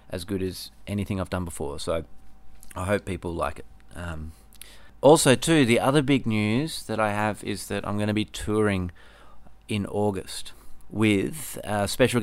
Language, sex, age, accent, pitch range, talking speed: English, male, 30-49, Australian, 100-115 Hz, 165 wpm